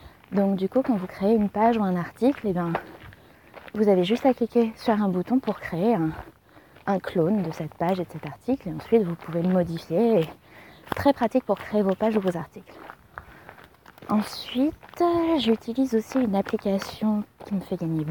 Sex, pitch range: female, 180-230 Hz